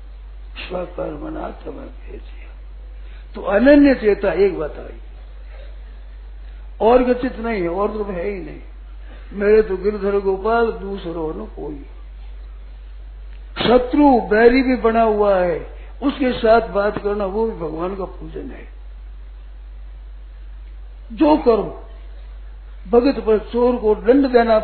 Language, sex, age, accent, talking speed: Hindi, male, 50-69, native, 120 wpm